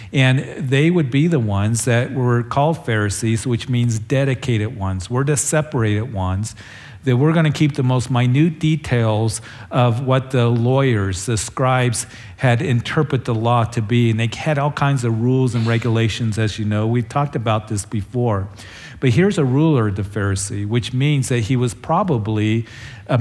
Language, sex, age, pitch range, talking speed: English, male, 40-59, 115-135 Hz, 180 wpm